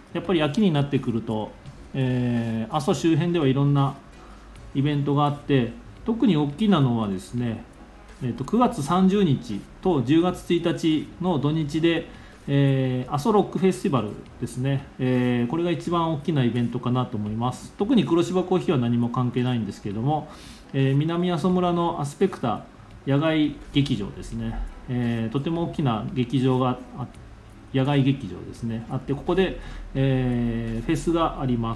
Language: Japanese